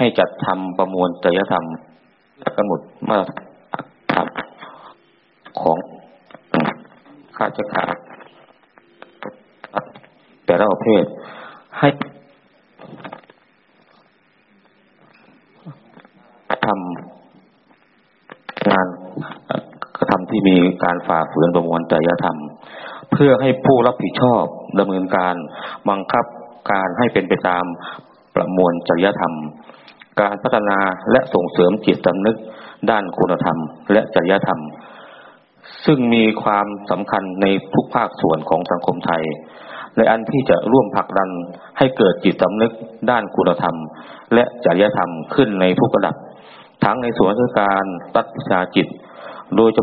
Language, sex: Thai, male